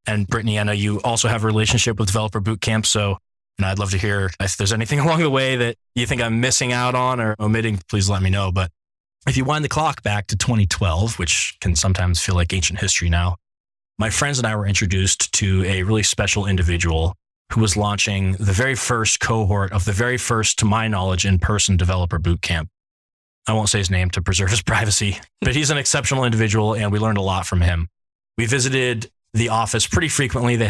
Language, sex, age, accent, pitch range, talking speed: English, male, 20-39, American, 95-110 Hz, 215 wpm